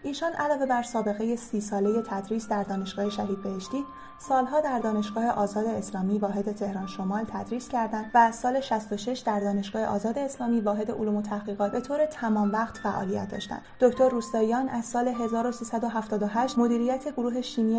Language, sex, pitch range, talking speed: Persian, female, 210-245 Hz, 160 wpm